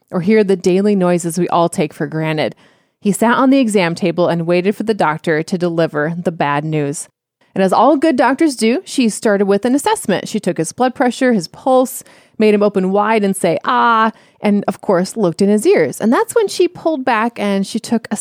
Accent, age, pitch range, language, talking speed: American, 30-49, 180-250 Hz, English, 225 wpm